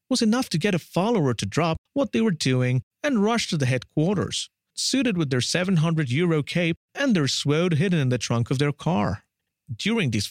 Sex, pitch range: male, 125-185 Hz